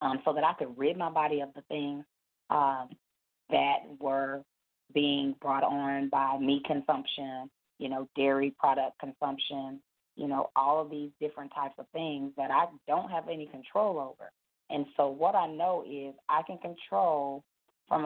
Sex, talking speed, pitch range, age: female, 170 wpm, 135-150 Hz, 30-49